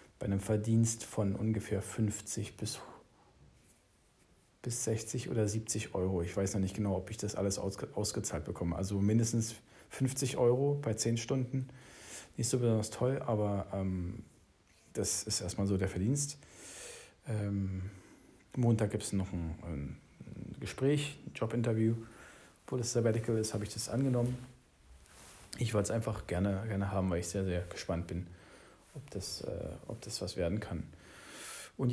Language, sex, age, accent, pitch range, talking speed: English, male, 40-59, German, 100-120 Hz, 155 wpm